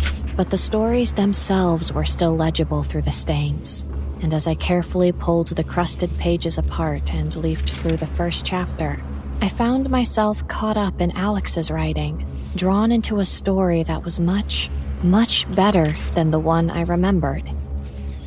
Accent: American